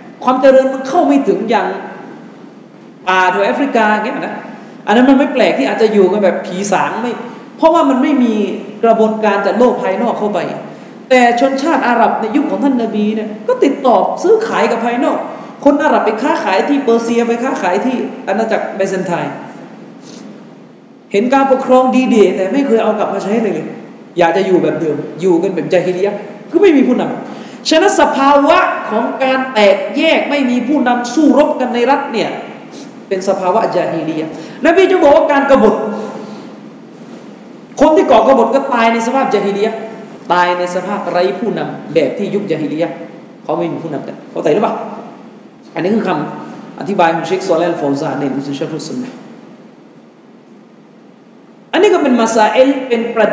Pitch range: 195-265 Hz